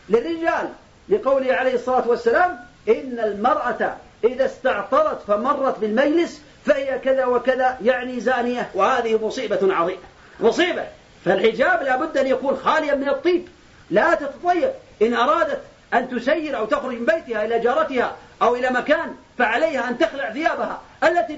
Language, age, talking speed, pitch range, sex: Arabic, 40-59, 130 wpm, 235-295 Hz, male